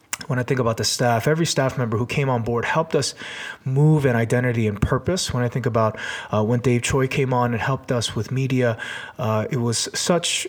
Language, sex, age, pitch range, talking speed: English, male, 30-49, 110-135 Hz, 225 wpm